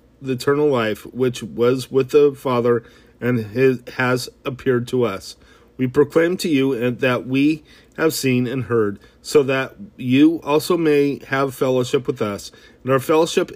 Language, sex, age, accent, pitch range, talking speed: English, male, 40-59, American, 125-150 Hz, 155 wpm